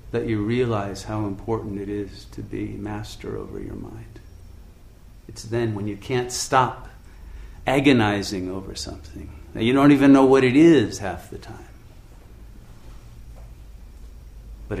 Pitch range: 80-115 Hz